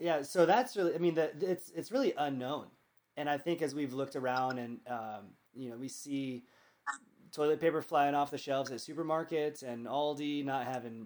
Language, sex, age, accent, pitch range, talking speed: English, male, 20-39, American, 125-150 Hz, 190 wpm